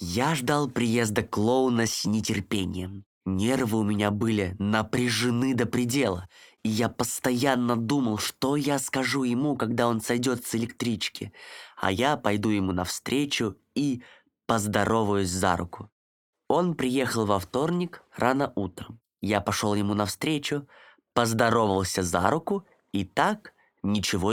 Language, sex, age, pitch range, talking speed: Russian, male, 20-39, 100-130 Hz, 125 wpm